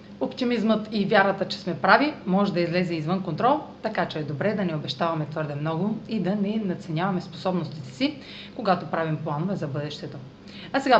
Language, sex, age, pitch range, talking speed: Bulgarian, female, 30-49, 165-220 Hz, 180 wpm